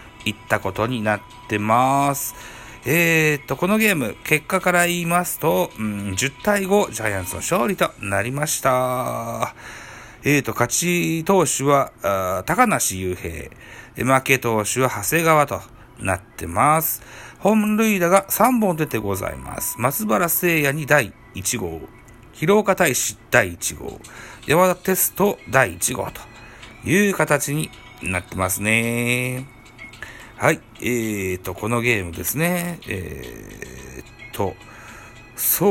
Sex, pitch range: male, 110-170 Hz